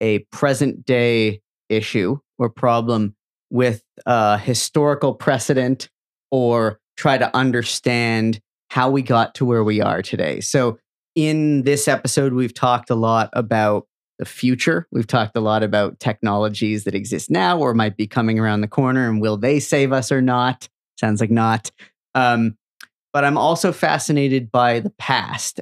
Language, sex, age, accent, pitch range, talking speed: English, male, 30-49, American, 110-135 Hz, 160 wpm